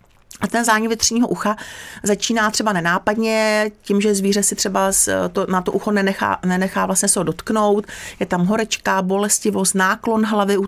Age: 40-59